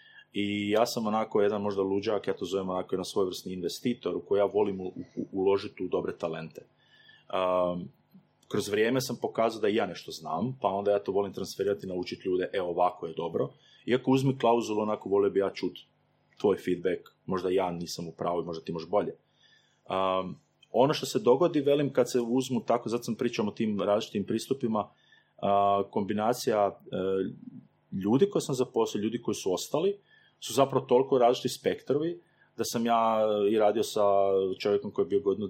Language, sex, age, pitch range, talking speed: Croatian, male, 30-49, 100-130 Hz, 185 wpm